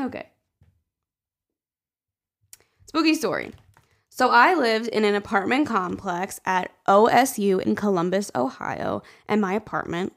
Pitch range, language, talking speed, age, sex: 185-230 Hz, English, 105 wpm, 20-39, female